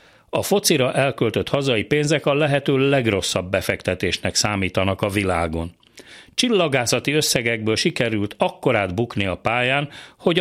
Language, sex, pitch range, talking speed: Hungarian, male, 105-150 Hz, 115 wpm